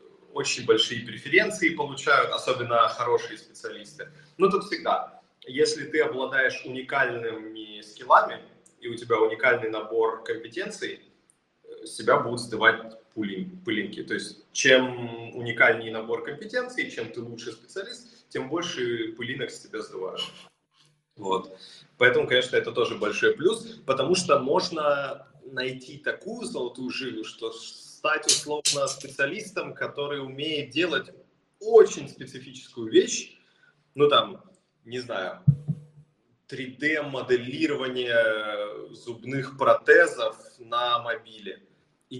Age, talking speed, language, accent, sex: 30-49, 105 wpm, Russian, native, male